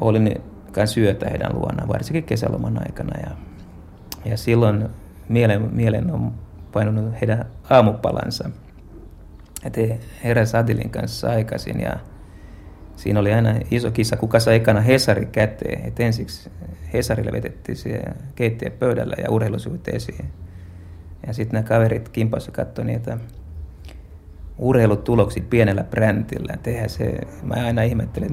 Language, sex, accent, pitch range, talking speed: Finnish, male, native, 85-115 Hz, 110 wpm